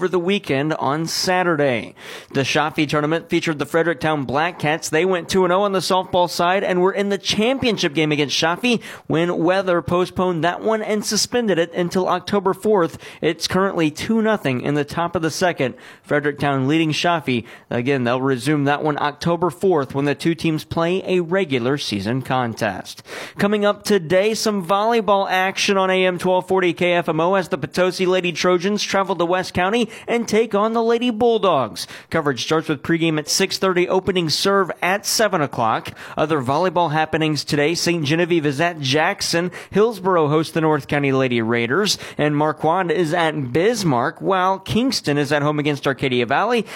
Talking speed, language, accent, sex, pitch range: 170 wpm, English, American, male, 155-195 Hz